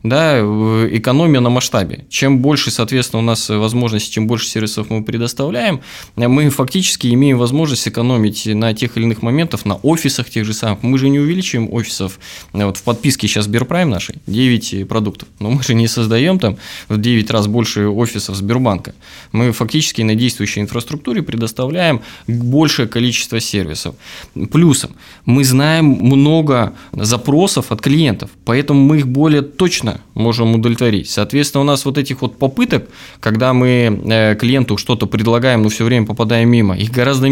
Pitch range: 110-135 Hz